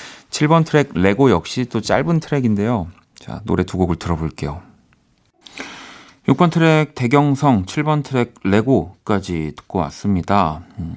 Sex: male